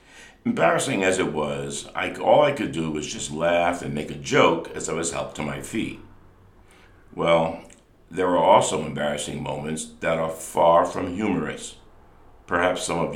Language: English